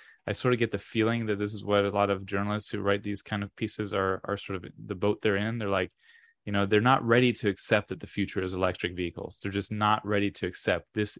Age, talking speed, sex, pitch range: 20-39, 270 wpm, male, 100-115 Hz